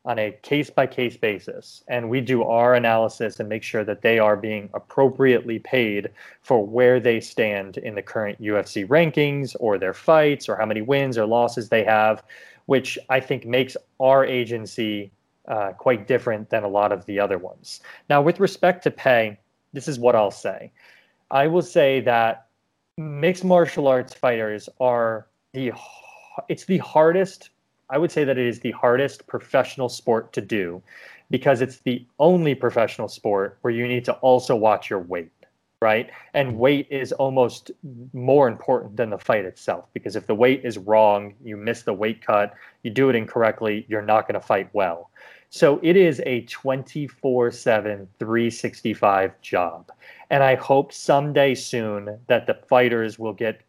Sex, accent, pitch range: male, American, 110-135 Hz